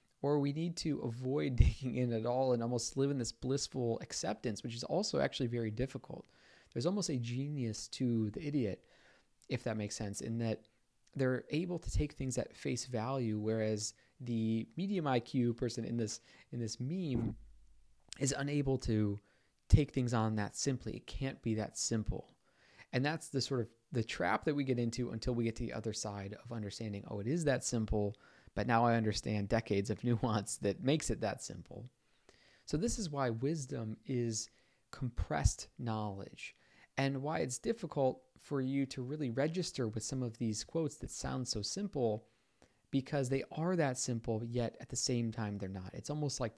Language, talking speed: English, 185 wpm